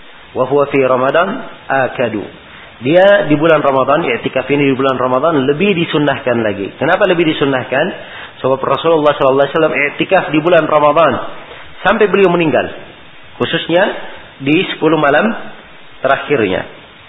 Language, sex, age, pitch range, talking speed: Malay, male, 40-59, 130-155 Hz, 125 wpm